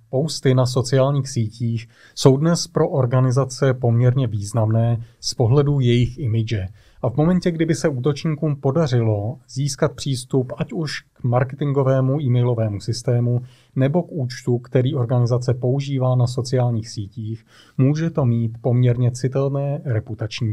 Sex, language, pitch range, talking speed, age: male, Czech, 115-140 Hz, 130 wpm, 30-49